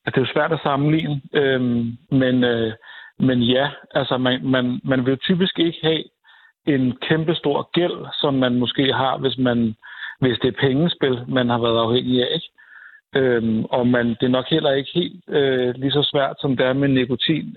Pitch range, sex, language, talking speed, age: 125-150 Hz, male, Danish, 190 wpm, 60-79